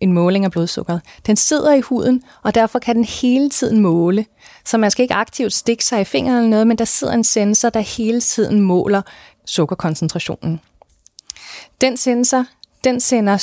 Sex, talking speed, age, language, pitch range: female, 180 wpm, 30-49, Danish, 180-230 Hz